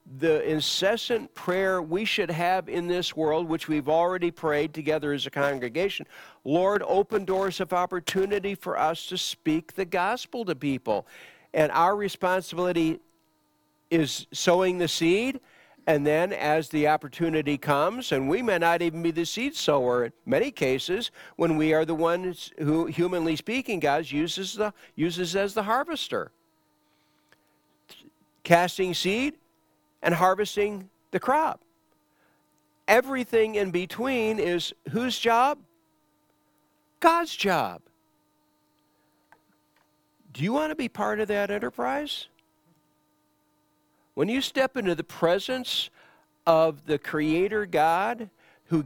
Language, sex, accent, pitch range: English, male, American, 155-200 Hz